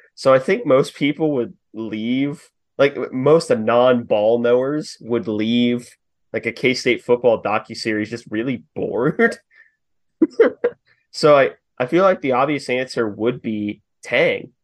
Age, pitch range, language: 30-49, 110-140 Hz, English